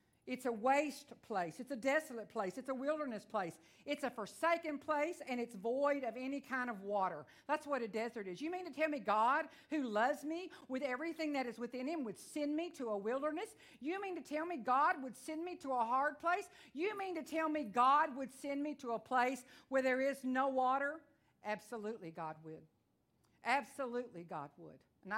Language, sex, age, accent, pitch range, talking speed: English, female, 50-69, American, 220-290 Hz, 205 wpm